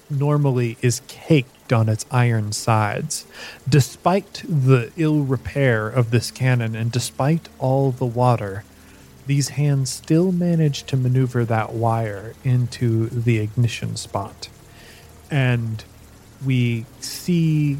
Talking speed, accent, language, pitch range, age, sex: 115 wpm, American, English, 115-135 Hz, 30-49, male